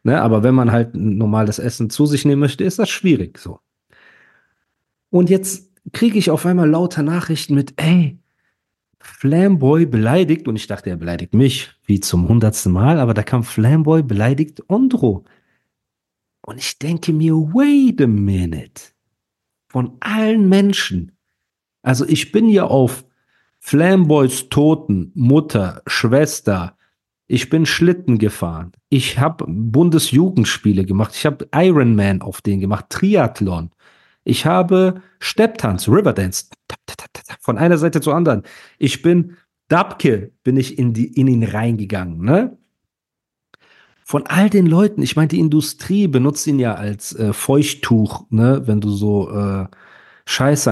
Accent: German